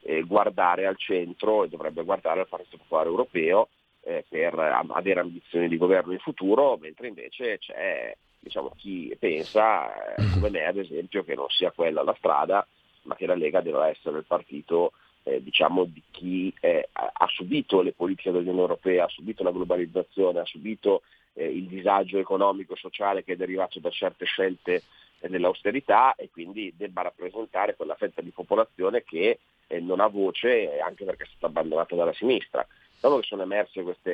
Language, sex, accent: Italian, male, native